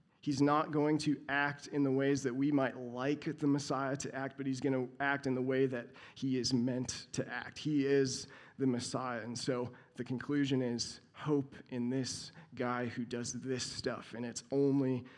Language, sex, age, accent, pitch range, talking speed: English, male, 30-49, American, 130-155 Hz, 200 wpm